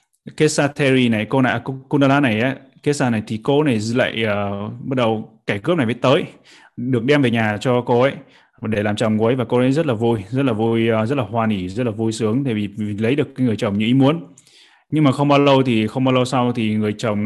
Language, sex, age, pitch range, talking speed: Vietnamese, male, 20-39, 110-135 Hz, 260 wpm